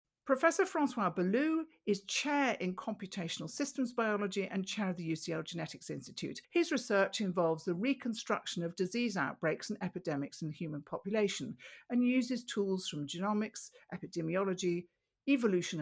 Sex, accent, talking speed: female, British, 140 wpm